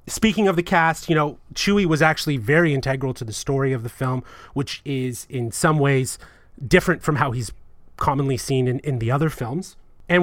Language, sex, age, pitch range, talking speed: English, male, 30-49, 140-180 Hz, 200 wpm